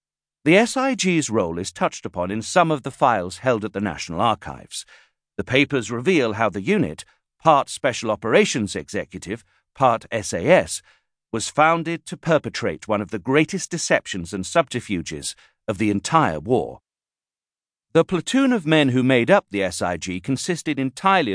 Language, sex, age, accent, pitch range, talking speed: English, male, 50-69, British, 100-145 Hz, 150 wpm